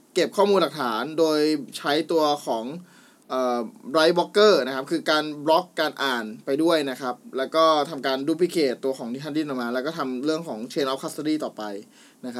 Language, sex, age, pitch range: Thai, male, 20-39, 145-215 Hz